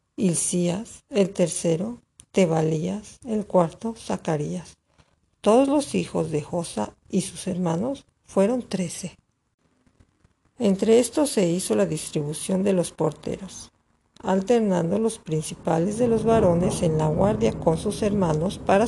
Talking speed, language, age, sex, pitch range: 125 wpm, Spanish, 50-69, female, 170-215 Hz